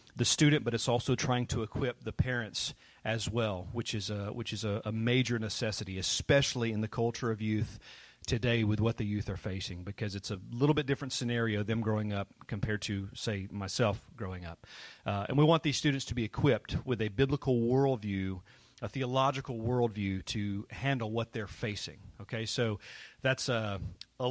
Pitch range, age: 110-130 Hz, 40-59